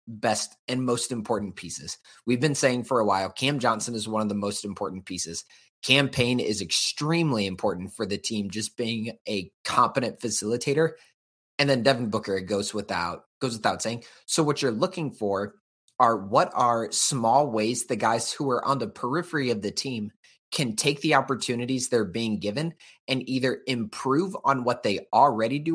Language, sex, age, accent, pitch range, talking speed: English, male, 30-49, American, 105-135 Hz, 180 wpm